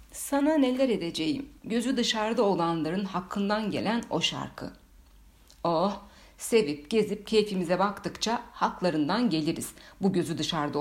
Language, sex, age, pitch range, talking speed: Turkish, female, 60-79, 155-220 Hz, 110 wpm